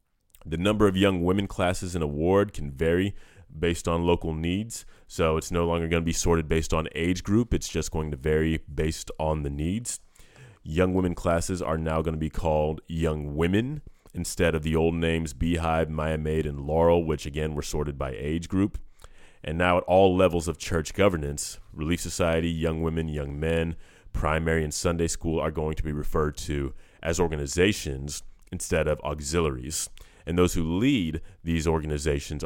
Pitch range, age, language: 75-85 Hz, 30-49, English